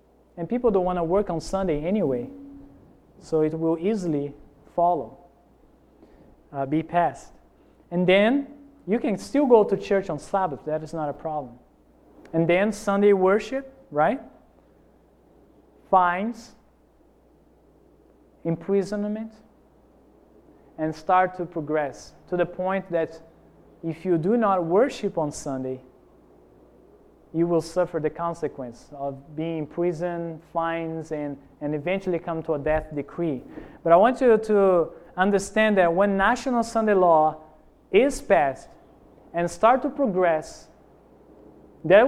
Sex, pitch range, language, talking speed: male, 160-205 Hz, English, 130 wpm